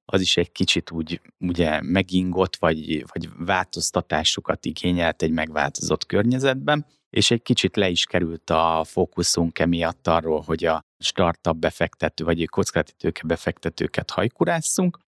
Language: Hungarian